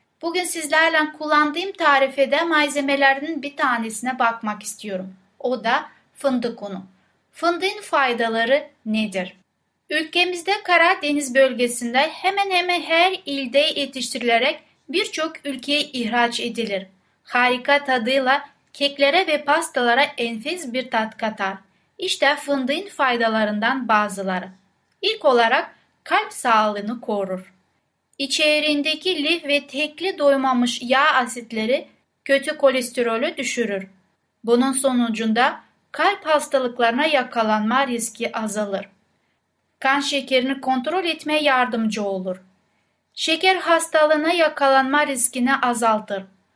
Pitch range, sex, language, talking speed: 235-300 Hz, female, Turkish, 95 wpm